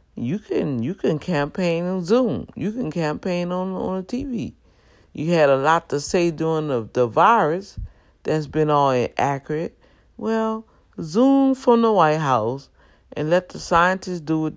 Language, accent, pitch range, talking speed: English, American, 130-195 Hz, 160 wpm